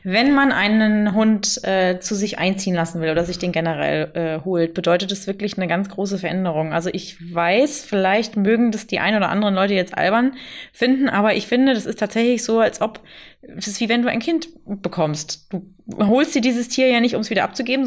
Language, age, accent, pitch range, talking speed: German, 20-39, German, 190-230 Hz, 220 wpm